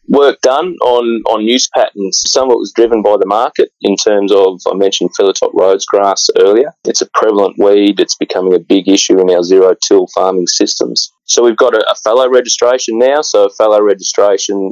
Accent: Australian